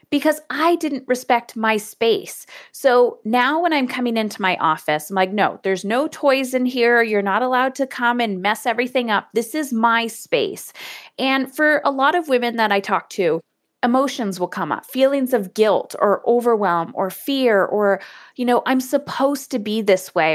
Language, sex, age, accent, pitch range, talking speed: English, female, 30-49, American, 190-265 Hz, 190 wpm